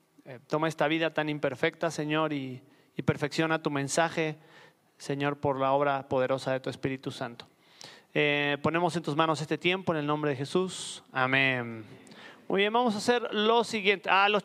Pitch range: 150-205 Hz